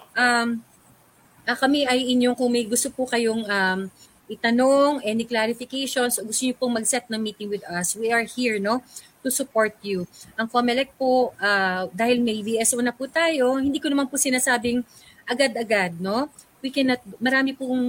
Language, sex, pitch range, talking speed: Filipino, female, 220-275 Hz, 165 wpm